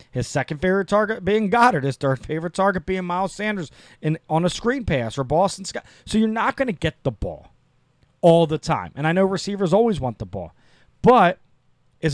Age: 30-49